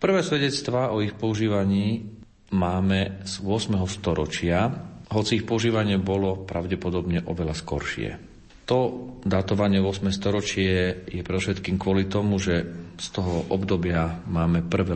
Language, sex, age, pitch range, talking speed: Slovak, male, 40-59, 85-105 Hz, 120 wpm